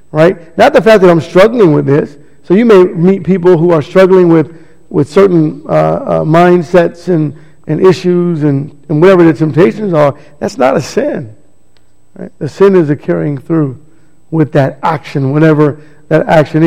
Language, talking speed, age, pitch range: English, 175 wpm, 50-69, 145-180 Hz